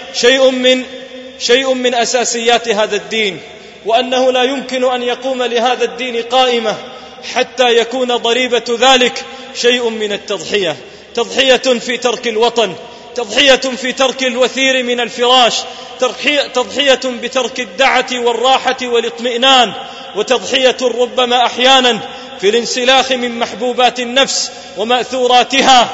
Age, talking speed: 30-49, 105 wpm